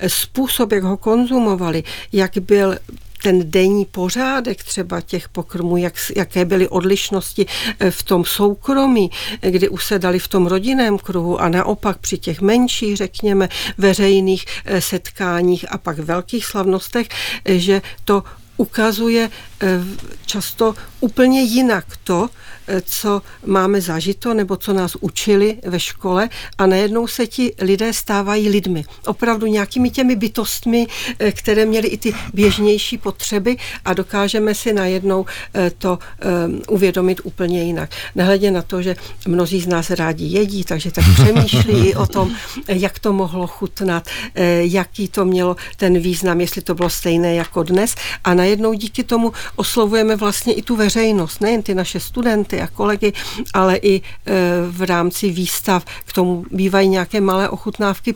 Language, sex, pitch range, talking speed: Czech, female, 180-215 Hz, 140 wpm